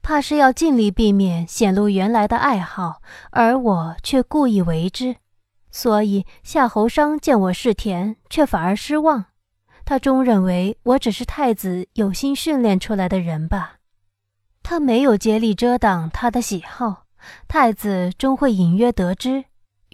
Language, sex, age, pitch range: Chinese, female, 20-39, 185-250 Hz